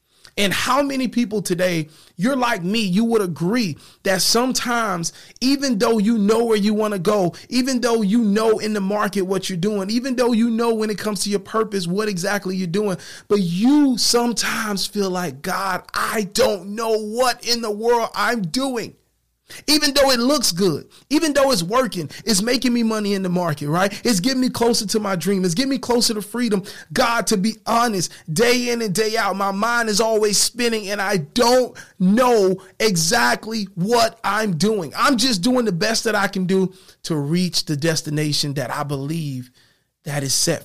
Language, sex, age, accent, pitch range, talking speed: English, male, 30-49, American, 175-235 Hz, 195 wpm